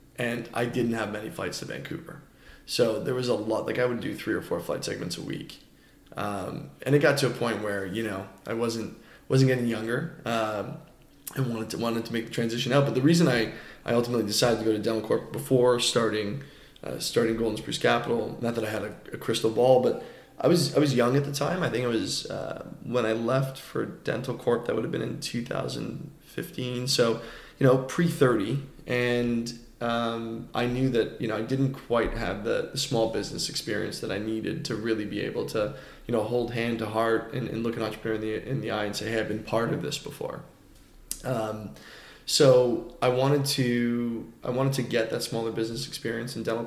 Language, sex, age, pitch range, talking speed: English, male, 20-39, 110-125 Hz, 215 wpm